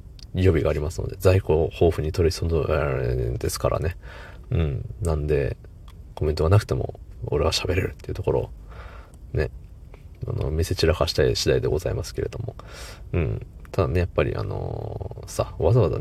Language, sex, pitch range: Japanese, male, 85-110 Hz